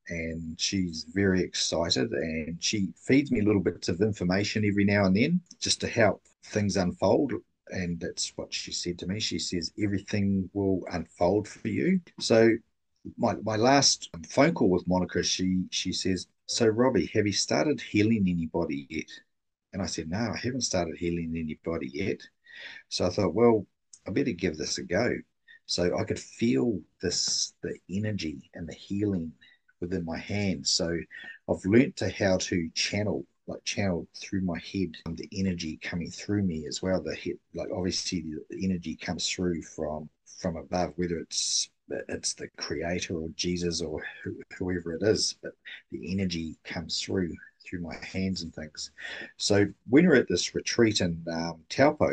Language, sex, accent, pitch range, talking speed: English, male, Australian, 85-105 Hz, 170 wpm